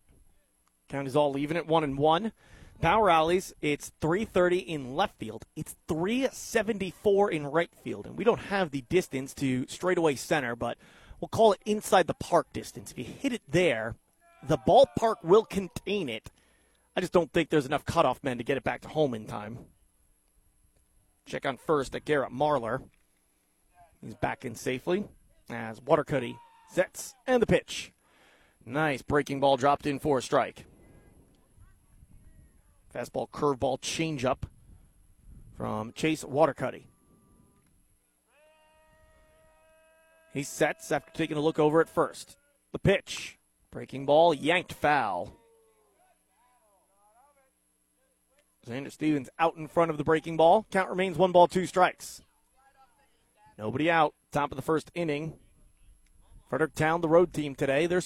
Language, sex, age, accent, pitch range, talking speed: English, male, 30-49, American, 130-185 Hz, 140 wpm